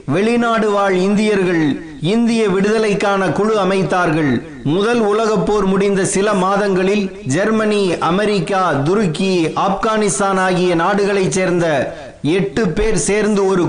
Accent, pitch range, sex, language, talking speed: native, 185-215 Hz, male, Tamil, 105 wpm